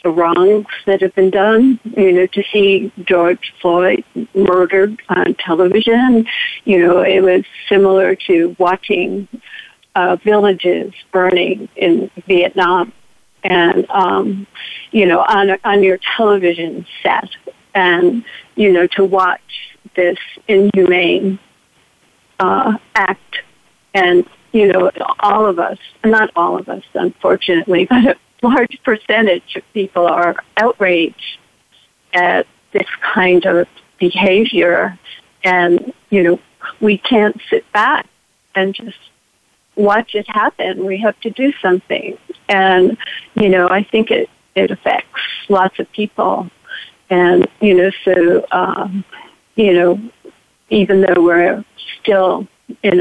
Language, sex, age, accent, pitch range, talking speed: English, female, 60-79, American, 180-215 Hz, 125 wpm